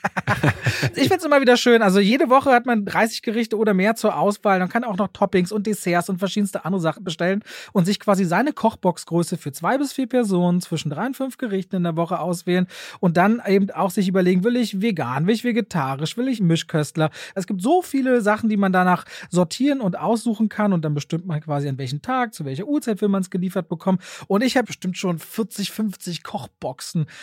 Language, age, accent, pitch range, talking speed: German, 30-49, German, 170-220 Hz, 220 wpm